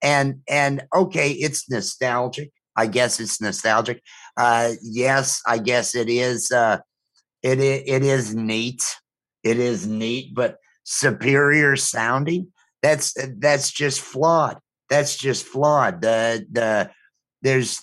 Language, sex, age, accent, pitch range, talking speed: English, male, 50-69, American, 115-140 Hz, 120 wpm